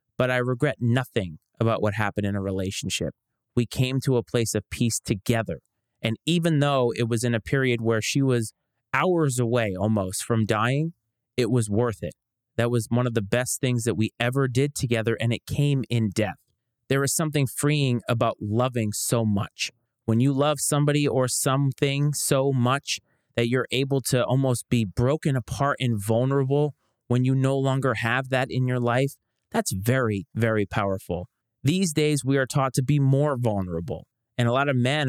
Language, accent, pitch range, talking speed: English, American, 115-135 Hz, 185 wpm